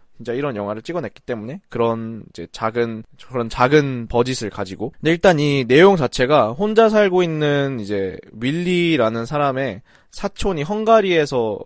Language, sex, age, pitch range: Korean, male, 20-39, 120-185 Hz